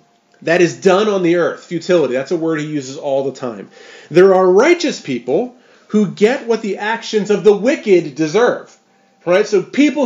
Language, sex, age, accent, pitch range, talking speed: English, male, 30-49, American, 160-235 Hz, 185 wpm